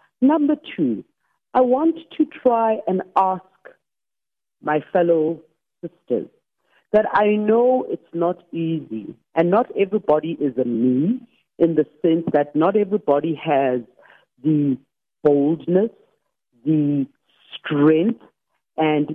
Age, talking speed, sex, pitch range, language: 60-79, 110 wpm, female, 155-220 Hz, English